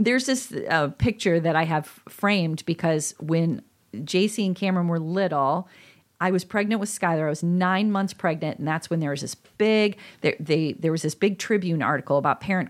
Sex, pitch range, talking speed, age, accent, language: female, 160-205 Hz, 200 wpm, 40-59, American, English